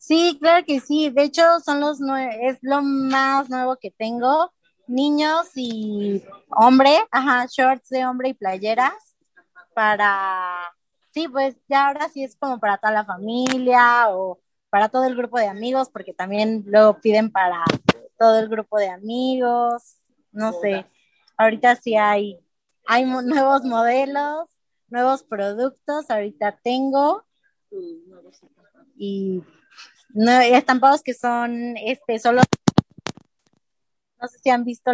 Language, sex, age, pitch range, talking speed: Spanish, female, 20-39, 210-270 Hz, 135 wpm